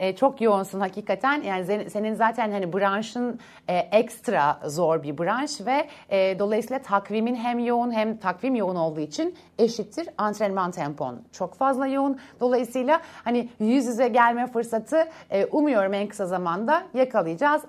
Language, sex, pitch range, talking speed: Turkish, female, 205-270 Hz, 145 wpm